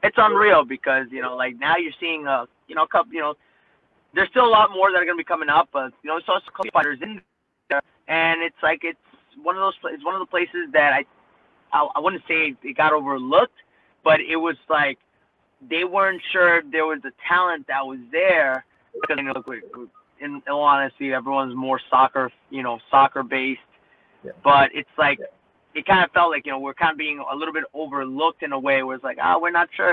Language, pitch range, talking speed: English, 135-170 Hz, 235 wpm